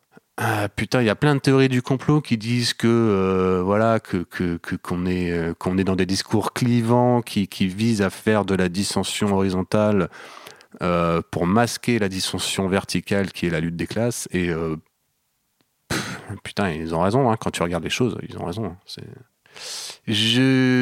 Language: French